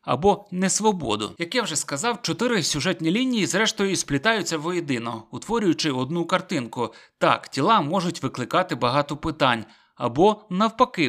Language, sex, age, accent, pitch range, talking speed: Ukrainian, male, 30-49, native, 140-195 Hz, 130 wpm